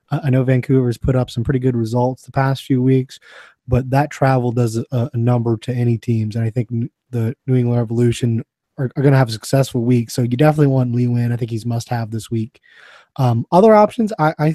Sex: male